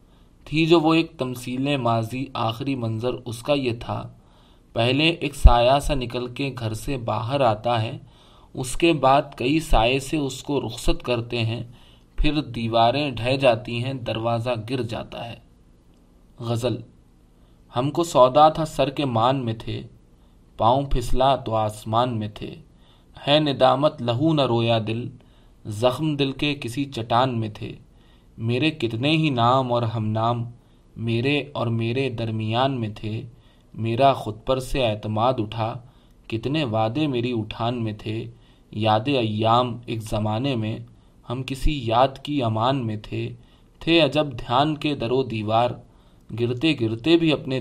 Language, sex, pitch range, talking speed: Urdu, male, 110-135 Hz, 150 wpm